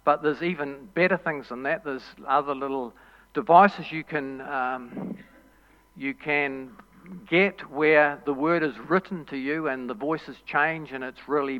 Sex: male